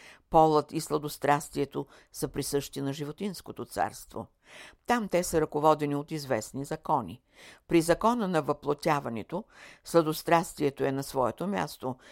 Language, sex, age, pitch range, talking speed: Bulgarian, female, 60-79, 130-160 Hz, 120 wpm